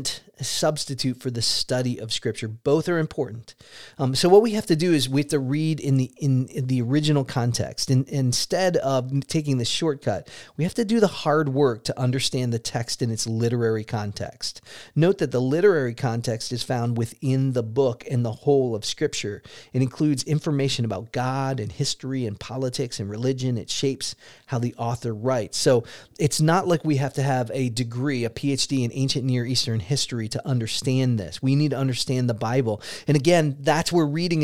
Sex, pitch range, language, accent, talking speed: male, 120-150 Hz, English, American, 195 wpm